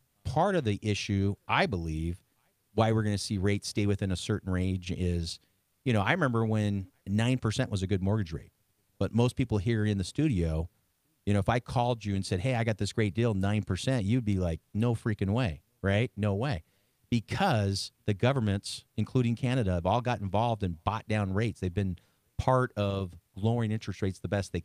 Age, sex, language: 40-59, male, English